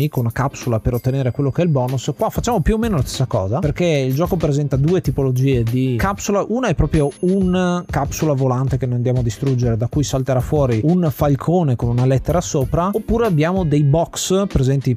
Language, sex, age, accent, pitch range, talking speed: Italian, male, 30-49, native, 125-155 Hz, 210 wpm